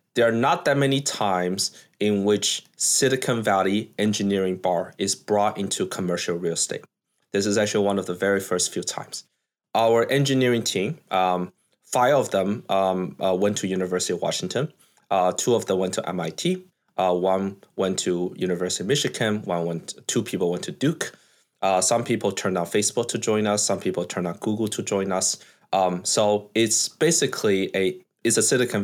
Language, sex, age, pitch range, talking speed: English, male, 20-39, 95-115 Hz, 185 wpm